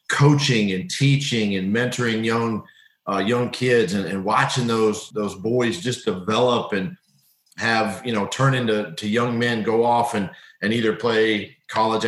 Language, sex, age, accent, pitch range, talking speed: English, male, 40-59, American, 110-130 Hz, 165 wpm